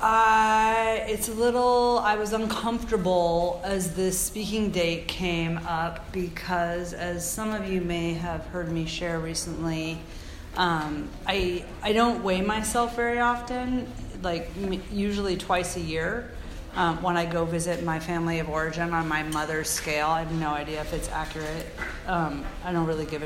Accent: American